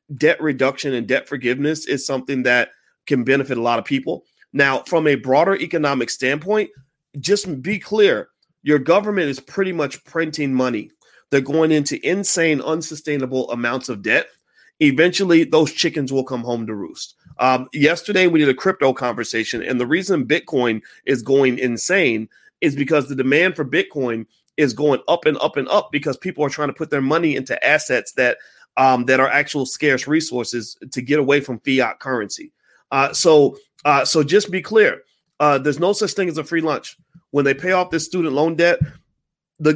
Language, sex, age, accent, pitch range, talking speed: English, male, 30-49, American, 130-165 Hz, 185 wpm